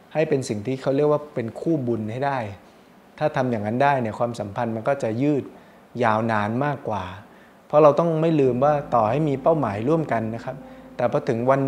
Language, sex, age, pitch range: Thai, male, 20-39, 110-140 Hz